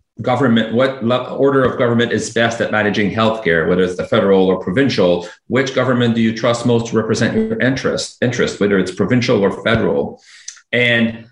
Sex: male